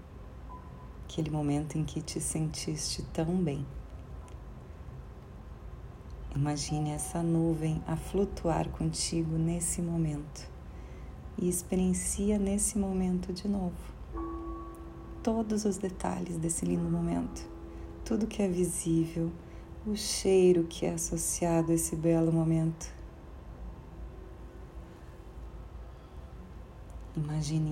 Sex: female